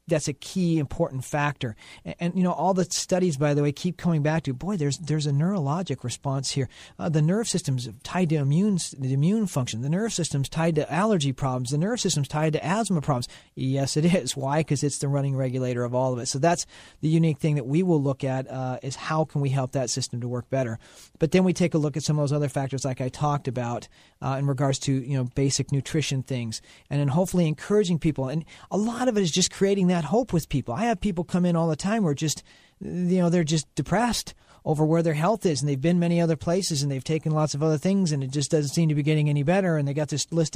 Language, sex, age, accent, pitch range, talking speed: English, male, 40-59, American, 135-165 Hz, 260 wpm